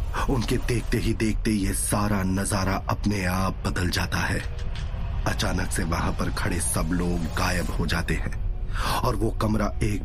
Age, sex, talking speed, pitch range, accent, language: 30-49, male, 165 wpm, 95-125 Hz, native, Hindi